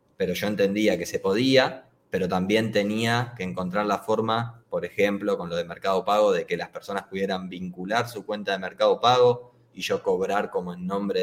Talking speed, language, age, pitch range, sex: 200 wpm, Spanish, 20-39, 95-125 Hz, male